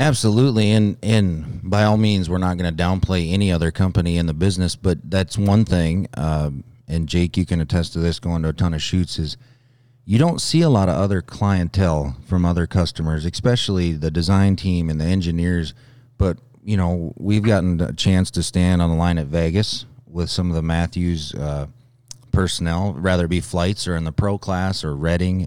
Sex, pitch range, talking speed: male, 85-105 Hz, 200 wpm